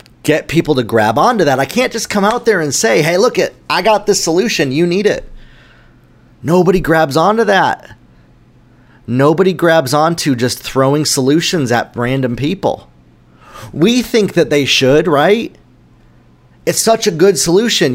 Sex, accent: male, American